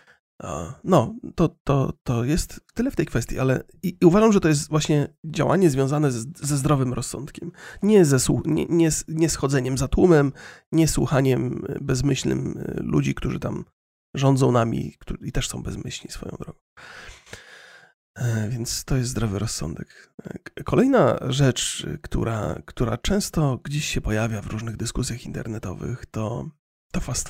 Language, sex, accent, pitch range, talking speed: Polish, male, native, 120-165 Hz, 145 wpm